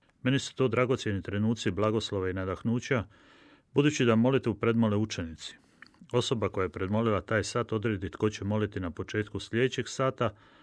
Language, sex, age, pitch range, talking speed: Croatian, male, 30-49, 100-125 Hz, 160 wpm